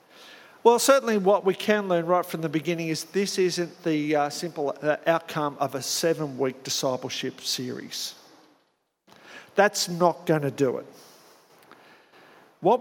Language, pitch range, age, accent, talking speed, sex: English, 155-205 Hz, 50-69, Australian, 135 wpm, male